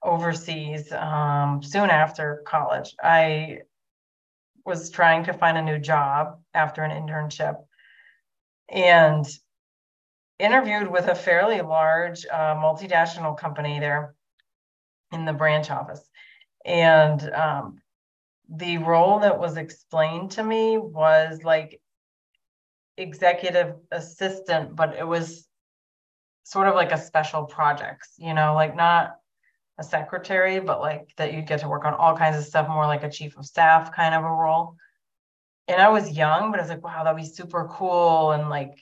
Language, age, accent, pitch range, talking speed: English, 30-49, American, 150-170 Hz, 150 wpm